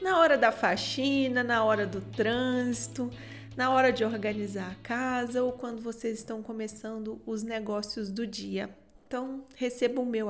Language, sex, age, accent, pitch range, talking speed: Portuguese, female, 30-49, Brazilian, 220-265 Hz, 155 wpm